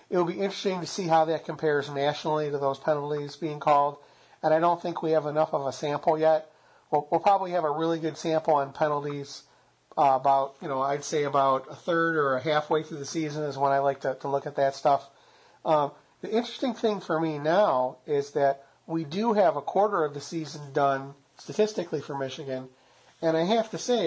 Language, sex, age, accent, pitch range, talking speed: English, male, 40-59, American, 140-170 Hz, 215 wpm